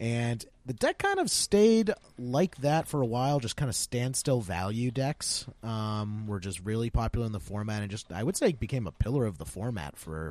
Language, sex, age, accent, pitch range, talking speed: English, male, 30-49, American, 95-125 Hz, 215 wpm